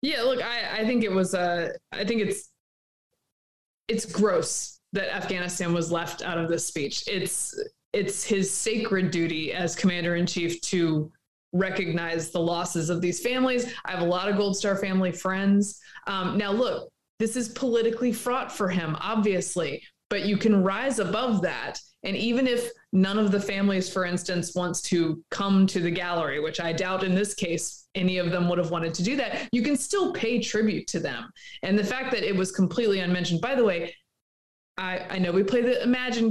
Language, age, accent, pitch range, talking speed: English, 20-39, American, 180-235 Hz, 195 wpm